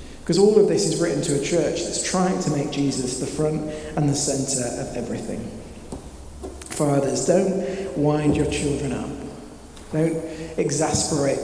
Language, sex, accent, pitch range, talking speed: English, male, British, 135-170 Hz, 150 wpm